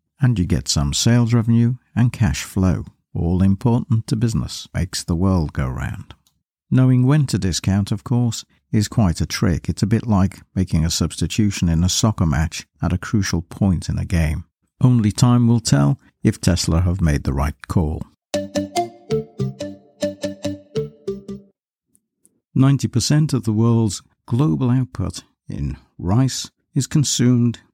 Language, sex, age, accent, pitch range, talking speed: English, male, 60-79, British, 85-120 Hz, 145 wpm